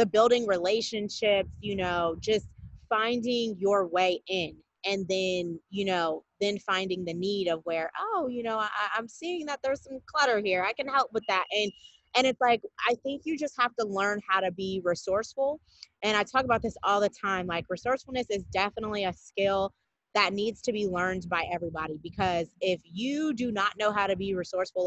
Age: 20-39